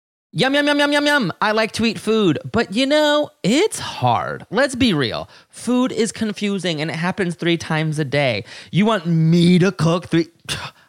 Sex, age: male, 20-39